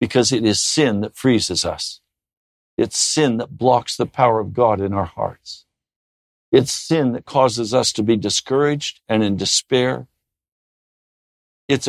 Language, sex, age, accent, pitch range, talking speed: English, male, 60-79, American, 115-150 Hz, 150 wpm